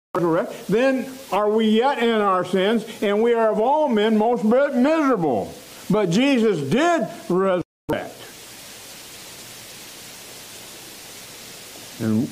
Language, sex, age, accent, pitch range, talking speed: English, male, 60-79, American, 155-235 Hz, 95 wpm